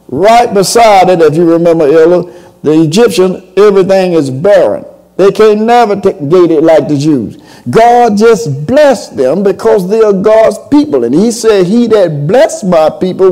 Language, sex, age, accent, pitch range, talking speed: English, male, 50-69, American, 170-220 Hz, 170 wpm